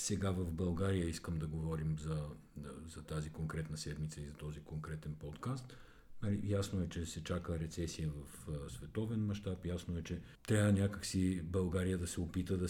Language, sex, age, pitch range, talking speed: Bulgarian, male, 50-69, 80-105 Hz, 165 wpm